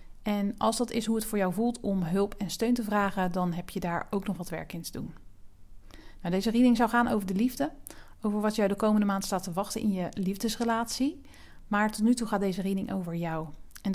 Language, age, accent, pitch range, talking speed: Dutch, 40-59, Dutch, 180-220 Hz, 235 wpm